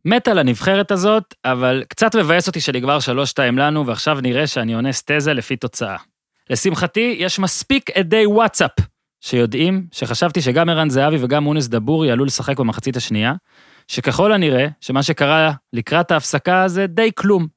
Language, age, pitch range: Hebrew, 30-49, 130-190 Hz